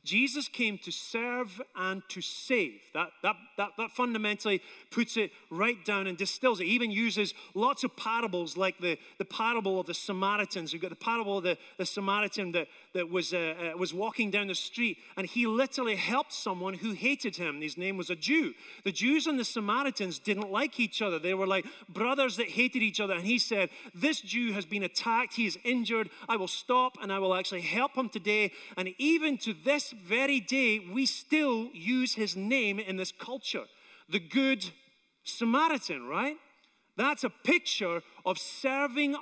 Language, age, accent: English, 30-49, British